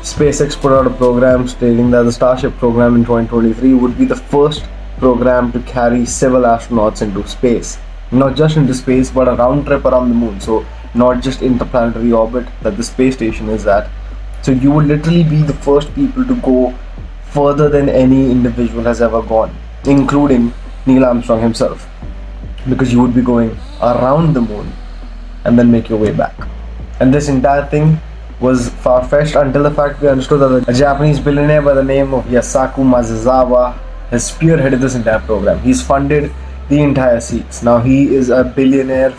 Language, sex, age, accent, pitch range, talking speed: English, male, 20-39, Indian, 115-135 Hz, 180 wpm